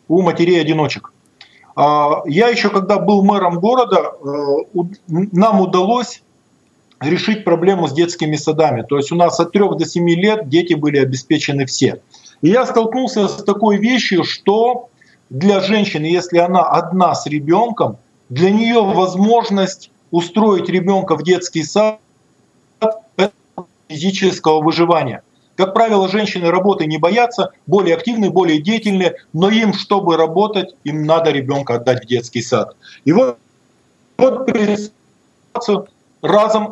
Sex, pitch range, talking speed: male, 160-205 Hz, 130 wpm